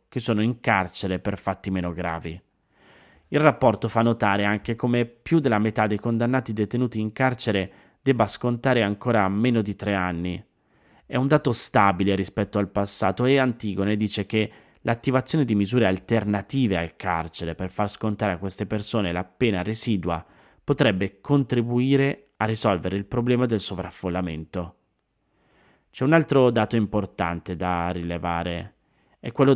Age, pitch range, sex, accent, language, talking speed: 30-49, 95-120 Hz, male, native, Italian, 145 wpm